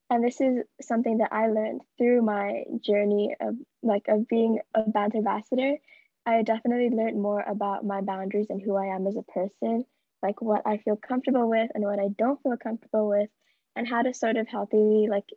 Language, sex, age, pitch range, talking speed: English, female, 10-29, 210-245 Hz, 195 wpm